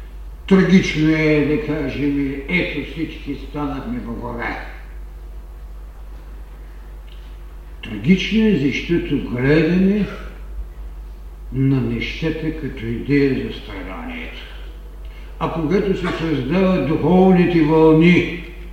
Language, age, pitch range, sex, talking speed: Bulgarian, 70-89, 135-210 Hz, male, 80 wpm